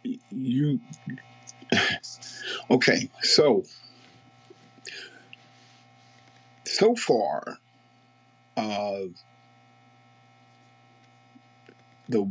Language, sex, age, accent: English, male, 50-69, American